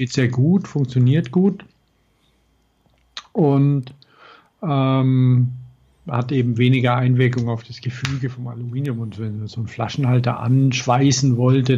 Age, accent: 60-79, German